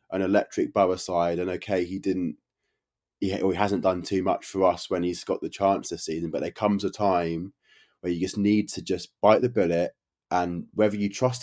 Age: 20-39